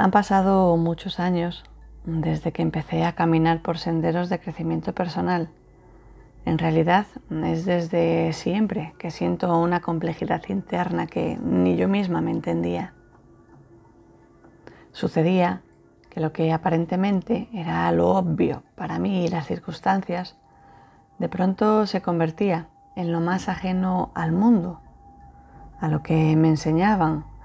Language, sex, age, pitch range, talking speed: Spanish, female, 30-49, 160-185 Hz, 125 wpm